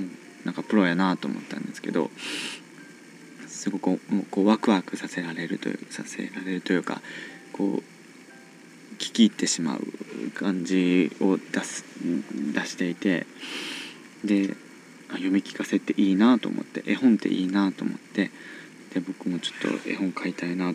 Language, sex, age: Japanese, male, 20-39